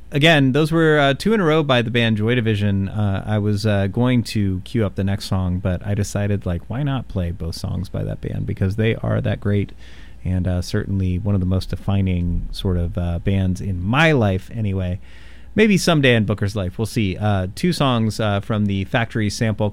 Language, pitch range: English, 95-125 Hz